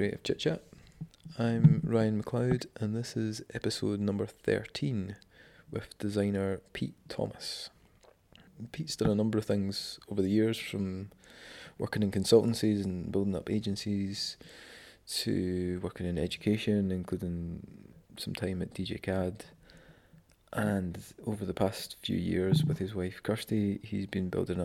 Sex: male